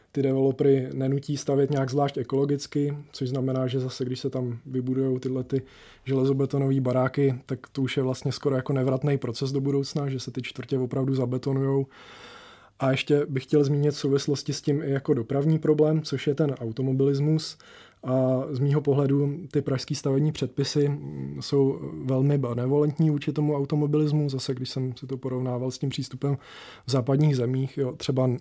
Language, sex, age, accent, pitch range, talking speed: English, male, 20-39, Czech, 130-140 Hz, 170 wpm